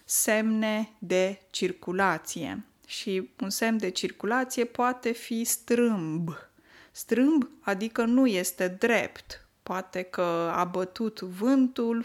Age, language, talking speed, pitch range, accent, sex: 20-39, Romanian, 105 wpm, 185-245 Hz, native, female